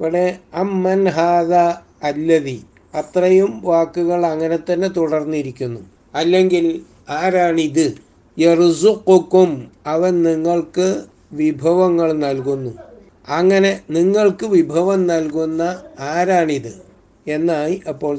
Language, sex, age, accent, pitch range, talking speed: Malayalam, male, 60-79, native, 145-180 Hz, 40 wpm